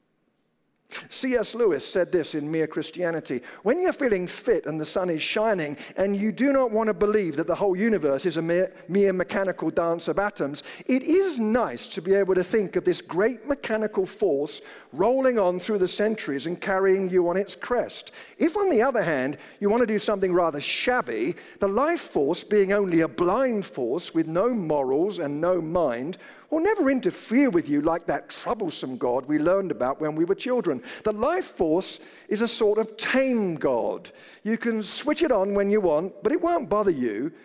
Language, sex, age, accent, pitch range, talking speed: English, male, 50-69, British, 175-245 Hz, 195 wpm